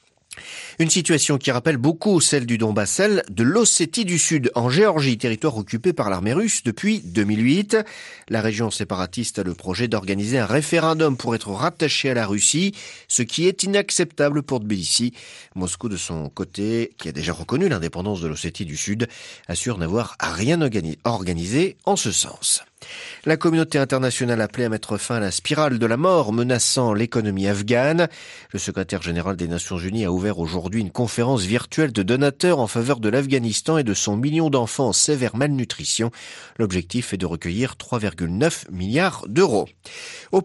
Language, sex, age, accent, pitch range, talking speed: French, male, 40-59, French, 105-150 Hz, 165 wpm